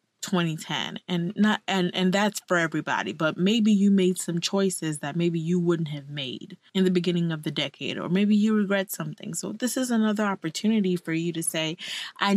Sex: female